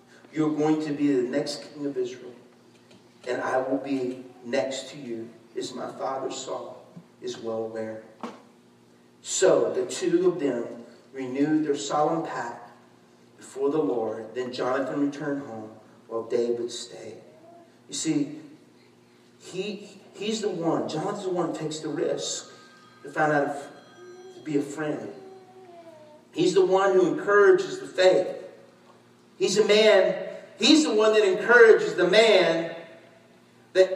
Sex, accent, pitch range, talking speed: male, American, 110-185 Hz, 140 wpm